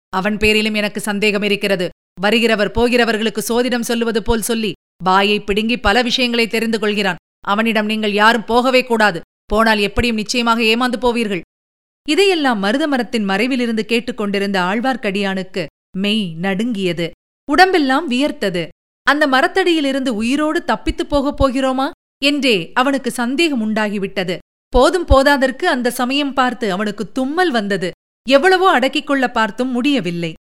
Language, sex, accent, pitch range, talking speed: Tamil, female, native, 200-270 Hz, 115 wpm